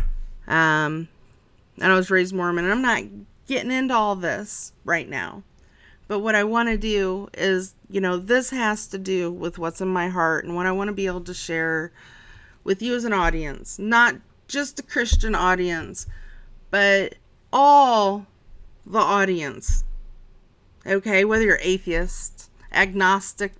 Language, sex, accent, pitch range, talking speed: English, female, American, 165-210 Hz, 155 wpm